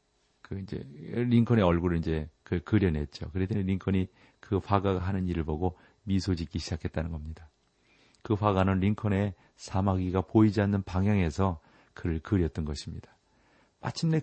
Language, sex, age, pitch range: Korean, male, 40-59, 85-105 Hz